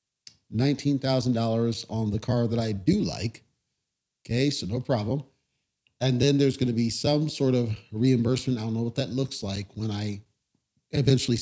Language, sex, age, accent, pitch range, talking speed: English, male, 40-59, American, 110-135 Hz, 165 wpm